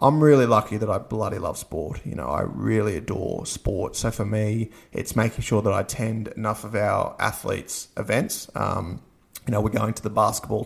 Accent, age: Australian, 20-39